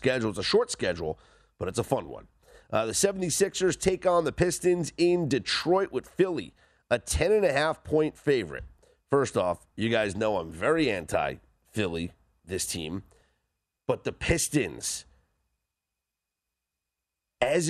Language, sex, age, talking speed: English, male, 40-59, 125 wpm